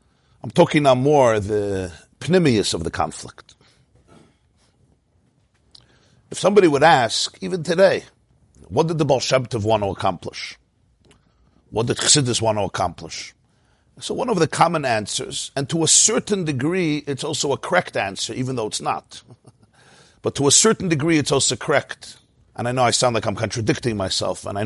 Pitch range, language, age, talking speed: 110-160 Hz, English, 50-69, 165 wpm